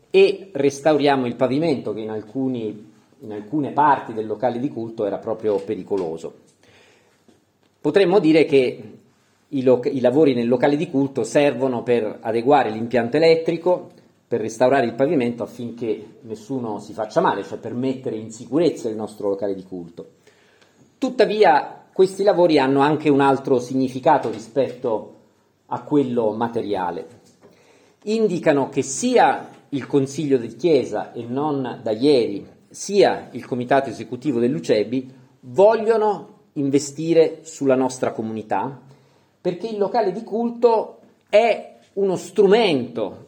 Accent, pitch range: native, 120-170 Hz